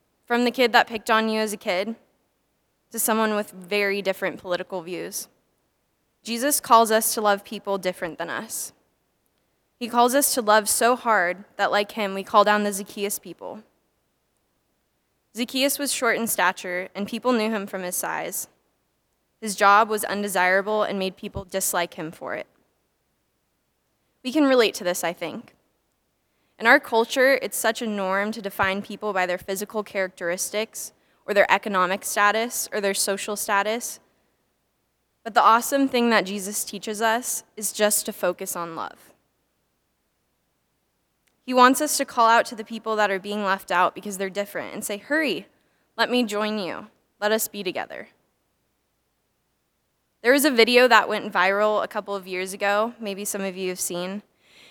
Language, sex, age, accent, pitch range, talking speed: English, female, 10-29, American, 195-230 Hz, 170 wpm